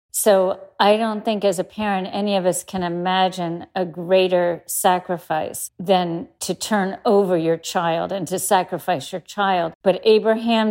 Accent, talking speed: American, 155 wpm